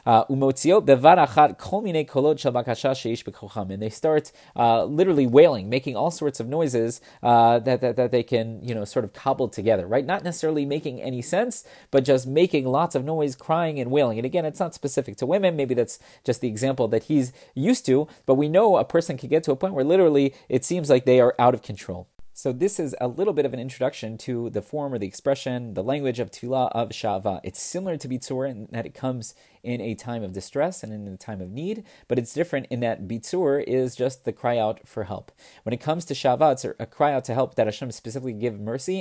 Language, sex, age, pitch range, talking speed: English, male, 30-49, 110-140 Hz, 220 wpm